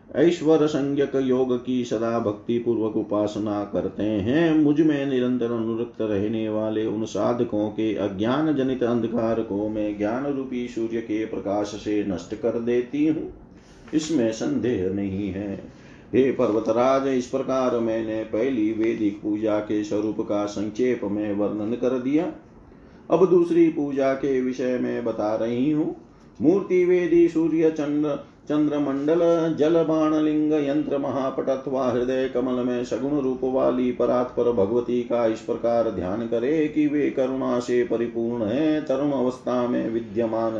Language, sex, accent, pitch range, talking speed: Hindi, male, native, 110-145 Hz, 110 wpm